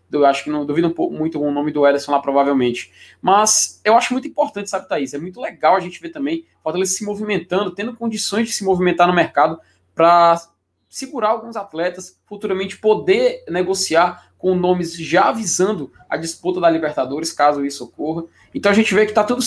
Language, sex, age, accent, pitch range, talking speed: Portuguese, male, 20-39, Brazilian, 155-210 Hz, 195 wpm